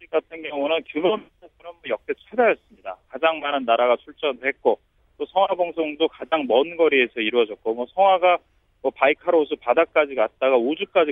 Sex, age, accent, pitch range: male, 40-59, native, 130-180 Hz